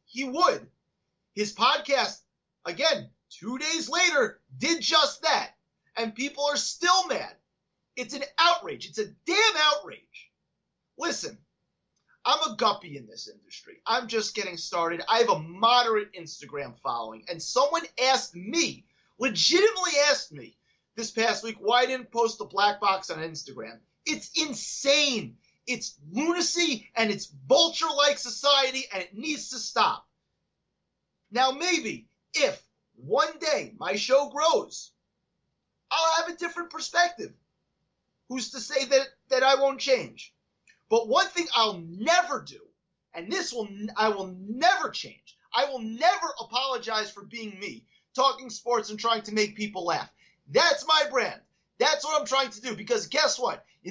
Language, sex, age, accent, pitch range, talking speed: English, male, 30-49, American, 215-310 Hz, 150 wpm